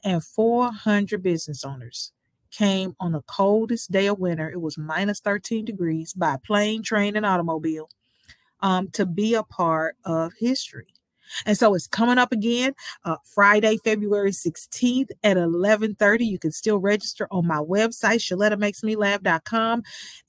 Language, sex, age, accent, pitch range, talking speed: English, female, 40-59, American, 175-235 Hz, 150 wpm